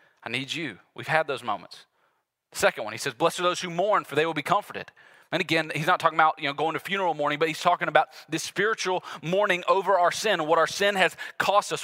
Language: English